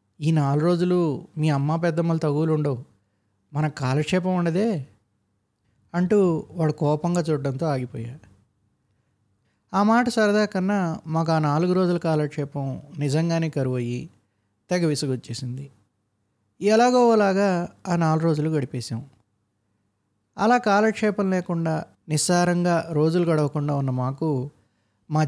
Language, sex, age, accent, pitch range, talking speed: Telugu, male, 20-39, native, 110-165 Hz, 100 wpm